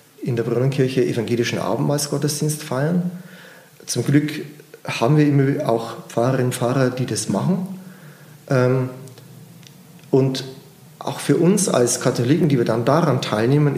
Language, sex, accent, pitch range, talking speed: German, male, German, 115-160 Hz, 125 wpm